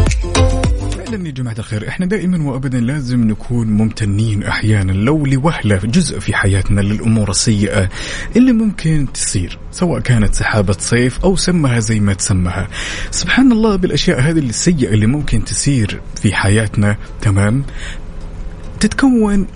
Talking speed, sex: 125 wpm, male